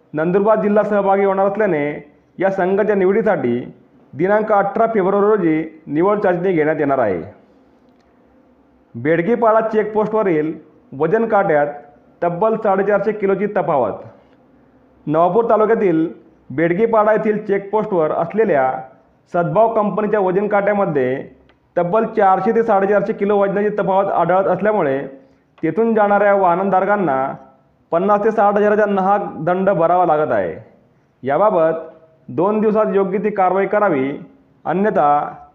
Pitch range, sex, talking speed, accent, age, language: 160-210 Hz, male, 105 wpm, native, 40-59, Marathi